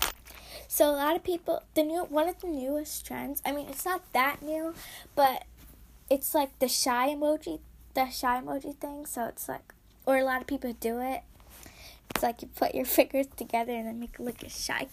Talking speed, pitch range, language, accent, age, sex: 215 wpm, 230-300 Hz, English, American, 10-29, female